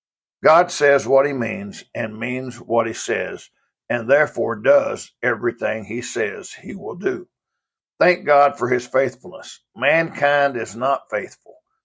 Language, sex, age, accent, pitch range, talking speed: English, male, 60-79, American, 120-155 Hz, 140 wpm